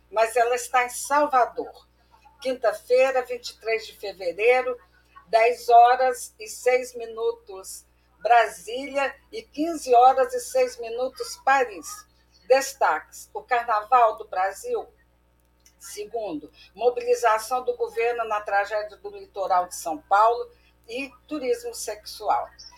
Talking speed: 110 wpm